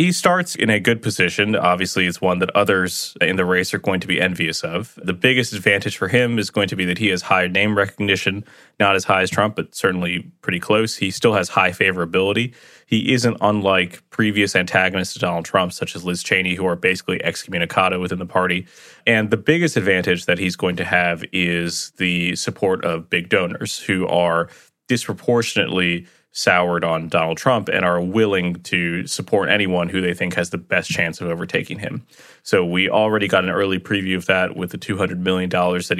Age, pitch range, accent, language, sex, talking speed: 20-39, 90-105 Hz, American, English, male, 200 wpm